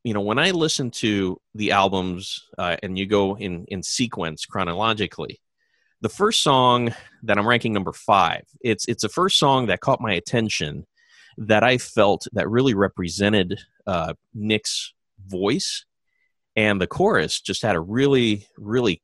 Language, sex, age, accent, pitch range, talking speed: English, male, 30-49, American, 95-125 Hz, 160 wpm